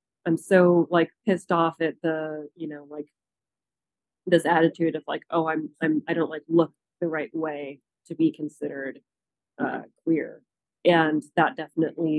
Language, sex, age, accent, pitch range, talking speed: English, female, 30-49, American, 150-170 Hz, 160 wpm